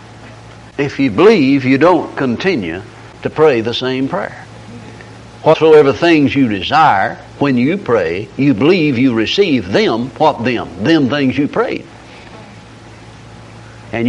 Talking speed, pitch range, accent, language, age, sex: 130 wpm, 120-155 Hz, American, English, 60-79, male